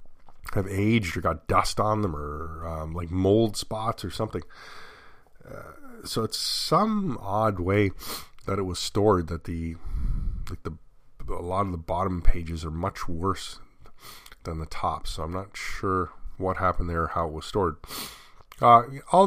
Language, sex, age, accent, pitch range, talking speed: English, male, 30-49, American, 85-110 Hz, 165 wpm